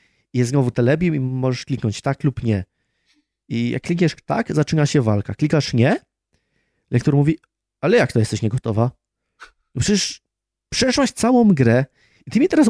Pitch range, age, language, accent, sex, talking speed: 115-150 Hz, 30-49, Polish, native, male, 155 wpm